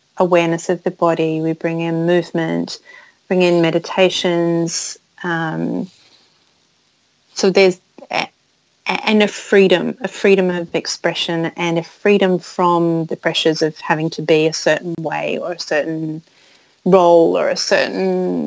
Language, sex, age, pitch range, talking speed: English, female, 30-49, 165-190 Hz, 135 wpm